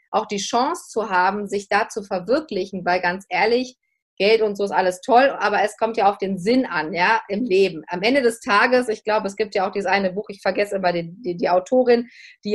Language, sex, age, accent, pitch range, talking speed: German, female, 30-49, German, 195-230 Hz, 240 wpm